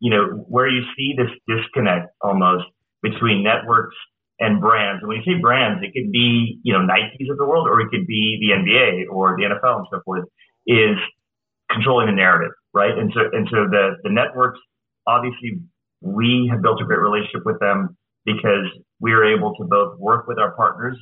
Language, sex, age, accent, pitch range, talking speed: English, male, 30-49, American, 105-130 Hz, 195 wpm